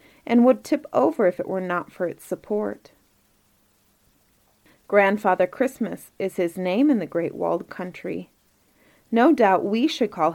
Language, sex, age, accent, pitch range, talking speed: English, female, 30-49, American, 175-245 Hz, 150 wpm